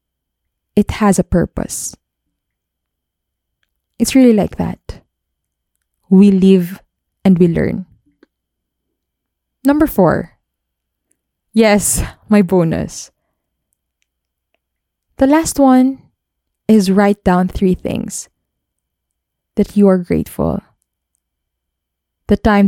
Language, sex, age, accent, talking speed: English, female, 20-39, Filipino, 85 wpm